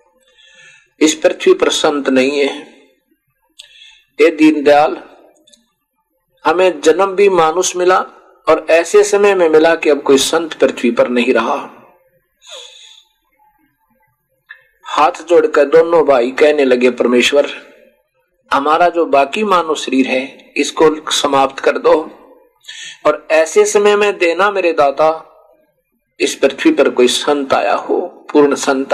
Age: 50-69